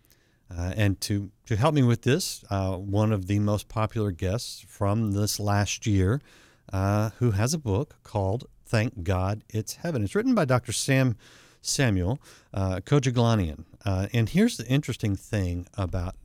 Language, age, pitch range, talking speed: English, 50-69, 95-120 Hz, 165 wpm